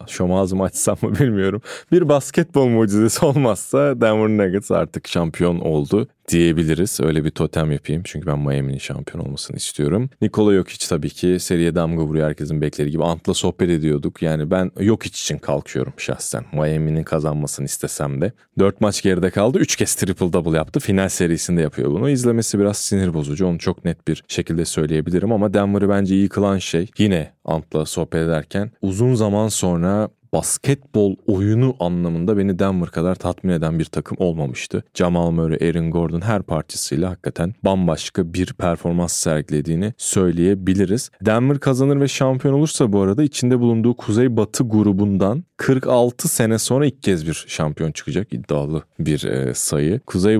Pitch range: 80-105 Hz